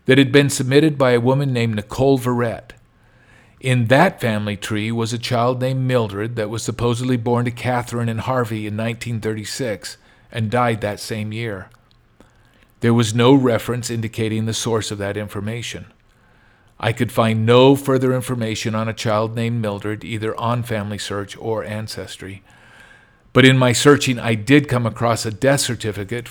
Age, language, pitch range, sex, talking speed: 50-69, English, 110-120 Hz, male, 165 wpm